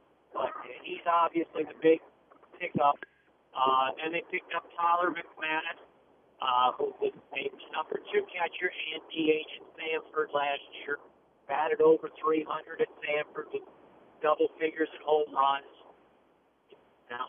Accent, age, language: American, 50-69, English